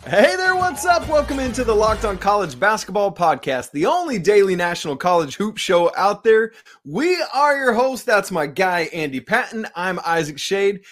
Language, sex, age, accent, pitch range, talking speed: English, male, 20-39, American, 150-210 Hz, 180 wpm